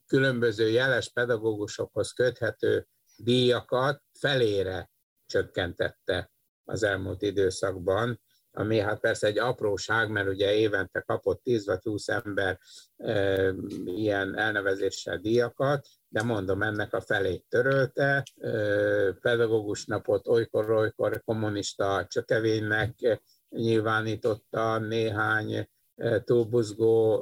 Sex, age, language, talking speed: male, 50-69, Hungarian, 85 wpm